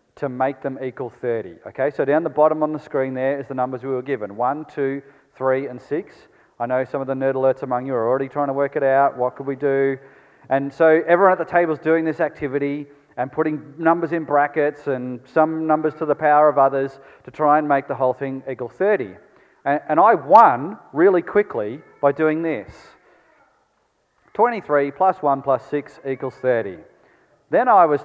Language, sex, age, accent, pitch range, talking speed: English, male, 30-49, Australian, 130-155 Hz, 205 wpm